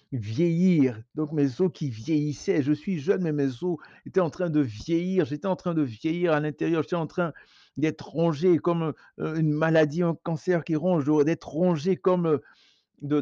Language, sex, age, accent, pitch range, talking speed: French, male, 60-79, French, 140-175 Hz, 180 wpm